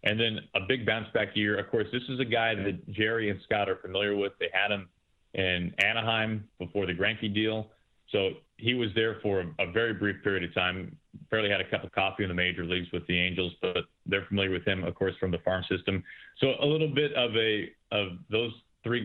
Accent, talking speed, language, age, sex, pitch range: American, 230 wpm, English, 30-49, male, 100-115 Hz